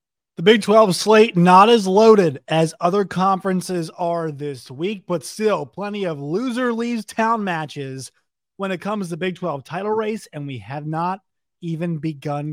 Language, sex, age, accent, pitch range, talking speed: English, male, 20-39, American, 150-190 Hz, 170 wpm